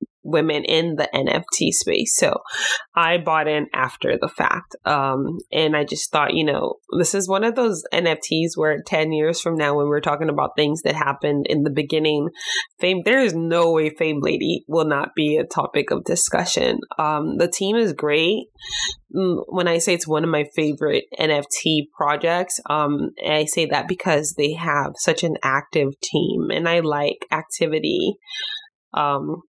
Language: English